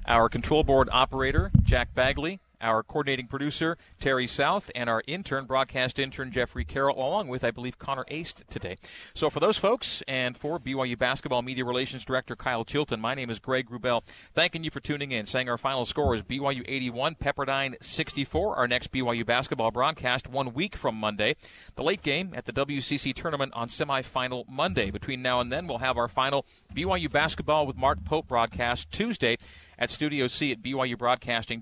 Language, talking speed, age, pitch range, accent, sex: English, 185 wpm, 40-59, 120-145 Hz, American, male